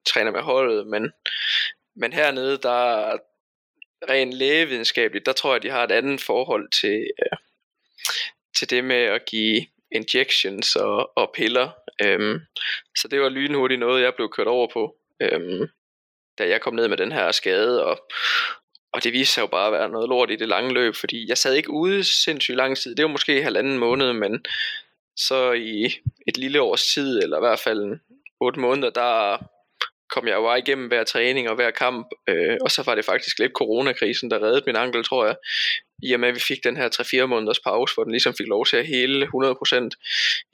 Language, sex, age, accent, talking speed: English, male, 20-39, Danish, 200 wpm